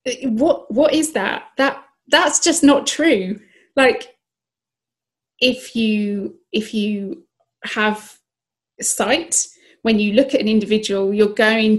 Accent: British